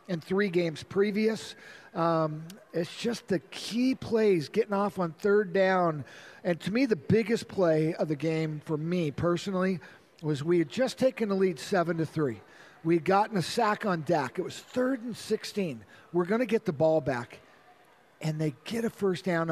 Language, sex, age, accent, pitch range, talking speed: English, male, 50-69, American, 165-210 Hz, 190 wpm